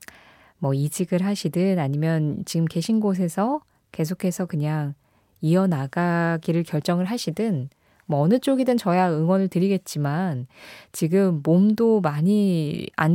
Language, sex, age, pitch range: Korean, female, 20-39, 160-215 Hz